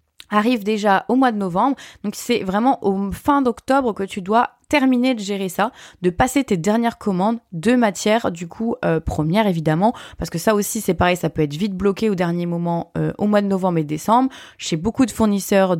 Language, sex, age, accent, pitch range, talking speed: French, female, 20-39, French, 180-245 Hz, 215 wpm